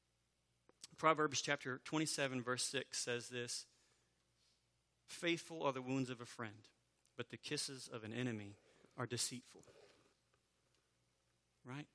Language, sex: English, male